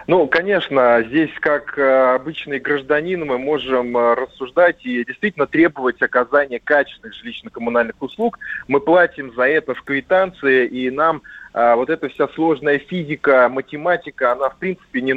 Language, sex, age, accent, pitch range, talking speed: Russian, male, 20-39, native, 125-160 Hz, 135 wpm